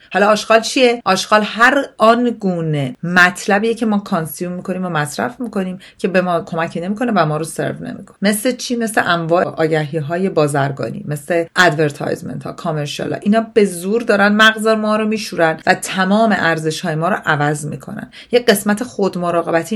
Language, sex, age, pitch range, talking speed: Persian, female, 40-59, 165-225 Hz, 165 wpm